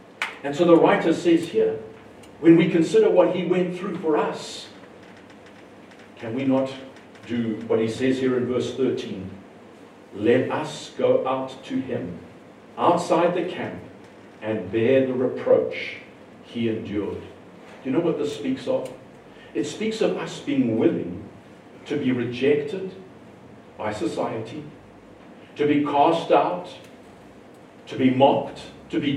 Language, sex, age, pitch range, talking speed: English, male, 50-69, 130-180 Hz, 140 wpm